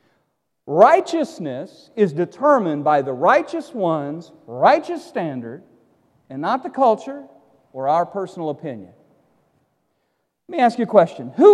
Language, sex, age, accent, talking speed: English, male, 40-59, American, 125 wpm